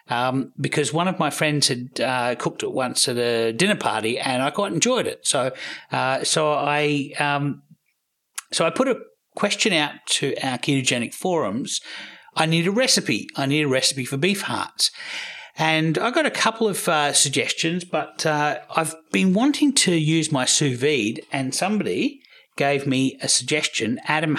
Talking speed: 175 wpm